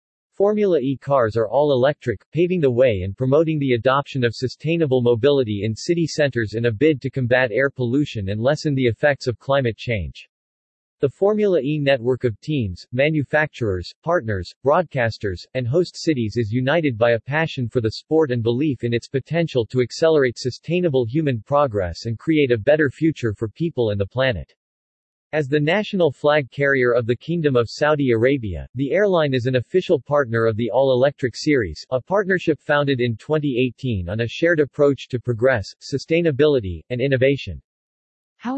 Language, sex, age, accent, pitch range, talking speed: English, male, 40-59, American, 120-150 Hz, 170 wpm